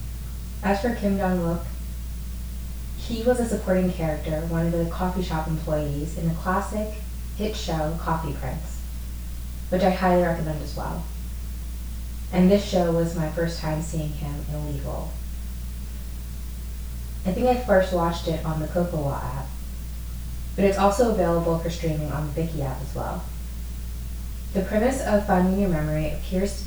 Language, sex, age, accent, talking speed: English, female, 20-39, American, 155 wpm